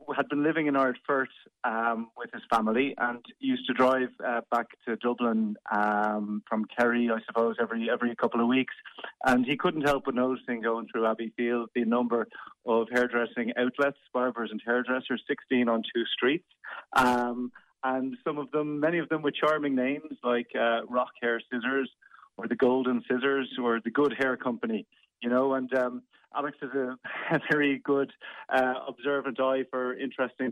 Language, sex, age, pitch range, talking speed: English, male, 30-49, 115-135 Hz, 175 wpm